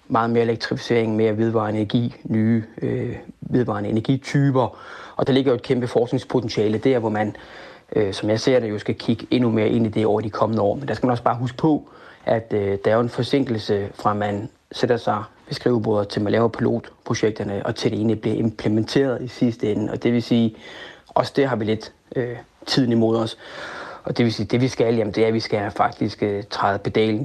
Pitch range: 110-125 Hz